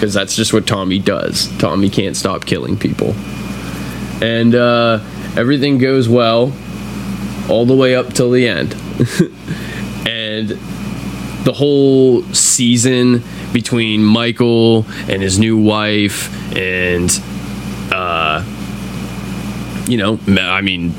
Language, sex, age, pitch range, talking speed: English, male, 20-39, 95-120 Hz, 110 wpm